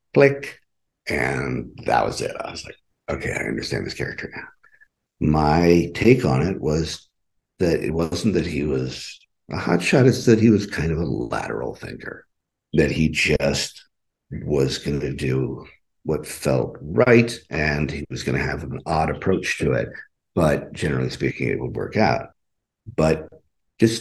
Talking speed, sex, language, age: 165 wpm, male, English, 60-79